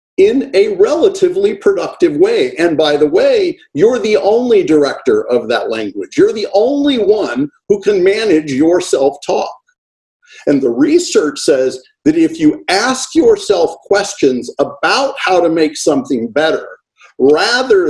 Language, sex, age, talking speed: English, male, 50-69, 145 wpm